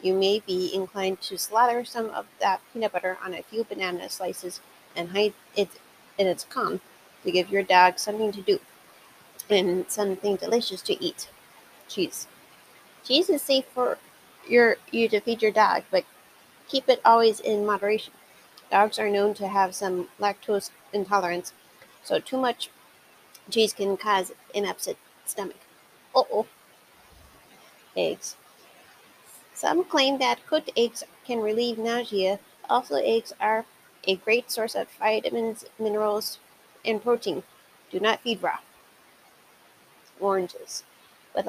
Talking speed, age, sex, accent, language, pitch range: 135 wpm, 40-59, female, American, English, 195-240 Hz